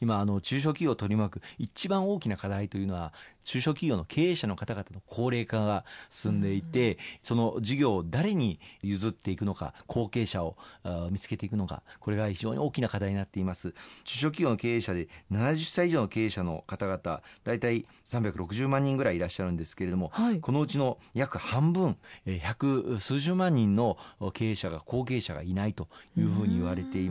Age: 40-59